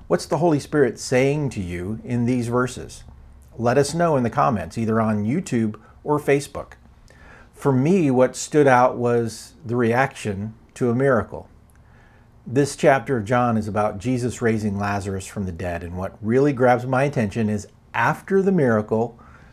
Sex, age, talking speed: male, 50-69, 165 wpm